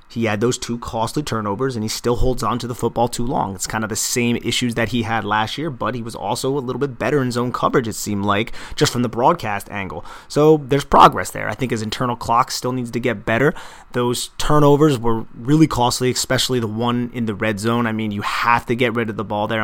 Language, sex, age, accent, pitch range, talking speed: English, male, 30-49, American, 110-125 Hz, 255 wpm